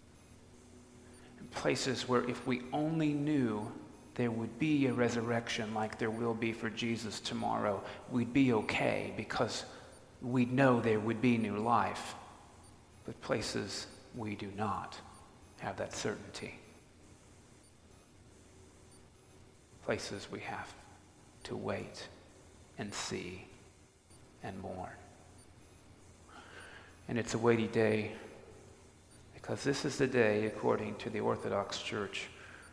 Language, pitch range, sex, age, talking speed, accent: English, 100-120 Hz, male, 40-59, 110 wpm, American